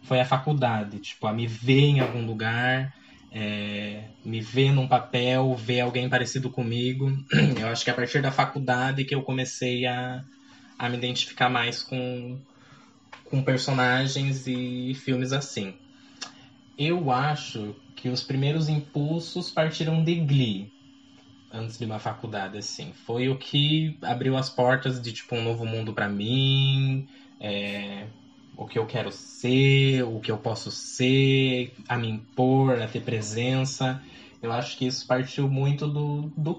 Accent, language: Brazilian, Portuguese